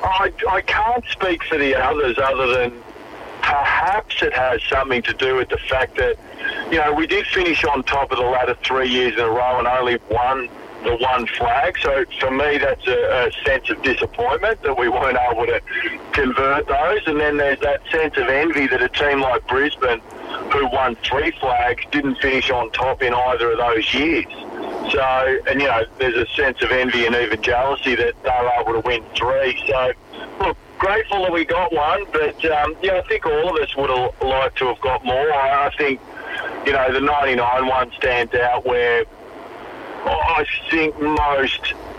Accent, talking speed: Australian, 195 wpm